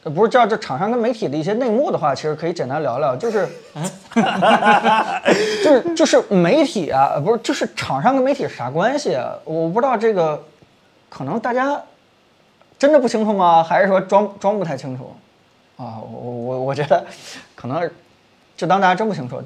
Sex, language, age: male, Chinese, 20-39